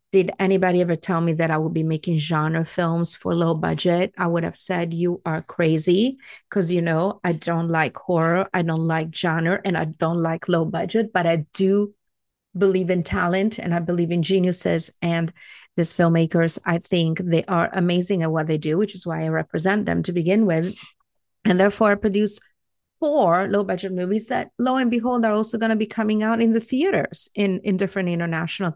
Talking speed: 200 wpm